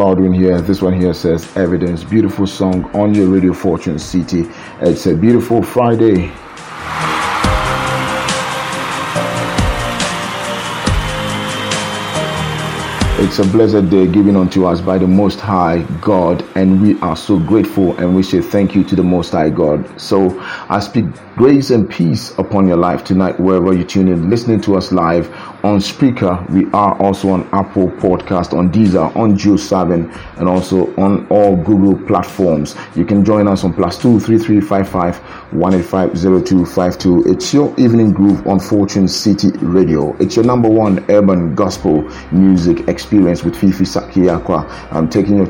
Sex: male